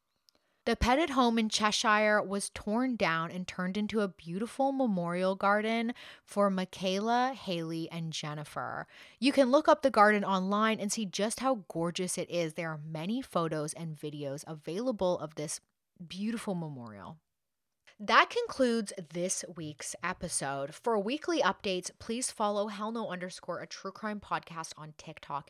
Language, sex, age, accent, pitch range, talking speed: English, female, 30-49, American, 170-230 Hz, 150 wpm